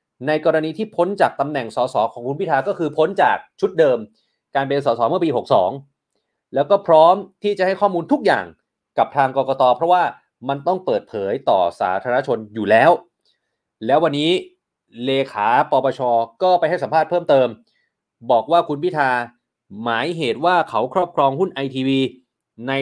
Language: Thai